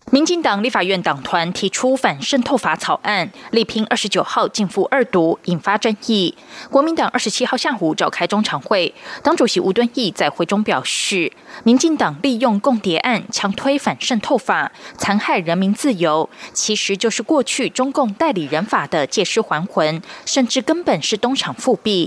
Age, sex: 20-39, female